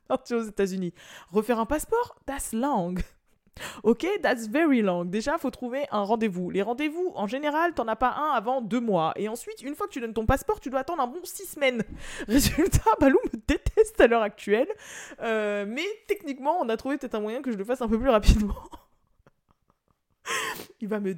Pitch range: 190-265 Hz